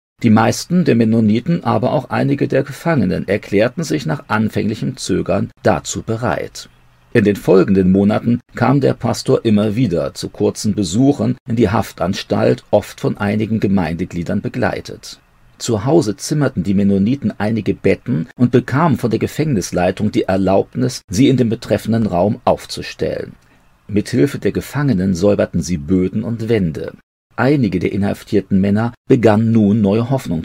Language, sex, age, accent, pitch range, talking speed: German, male, 40-59, German, 95-120 Hz, 145 wpm